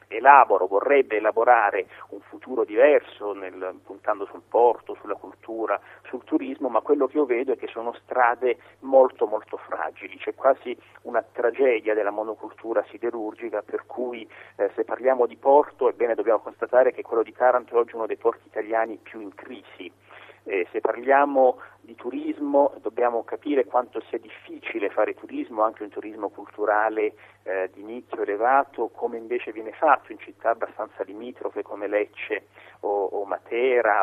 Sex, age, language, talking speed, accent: male, 40-59, Italian, 155 wpm, native